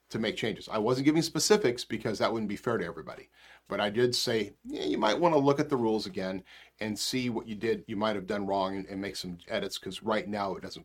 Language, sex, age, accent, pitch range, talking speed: English, male, 40-59, American, 95-125 Hz, 265 wpm